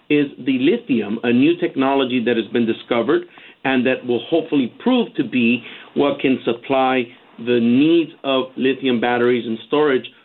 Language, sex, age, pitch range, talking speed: English, male, 50-69, 120-165 Hz, 160 wpm